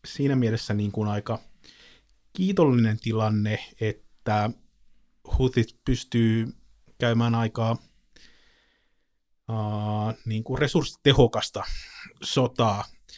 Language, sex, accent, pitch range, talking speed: Finnish, male, native, 110-130 Hz, 75 wpm